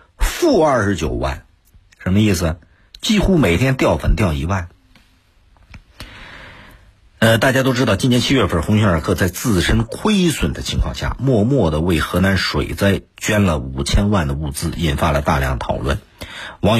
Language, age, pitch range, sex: Chinese, 50-69, 85-120 Hz, male